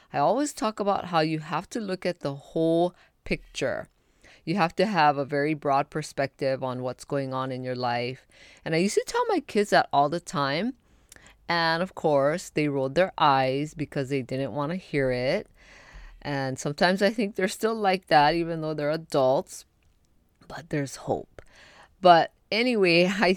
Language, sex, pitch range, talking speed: English, female, 140-195 Hz, 180 wpm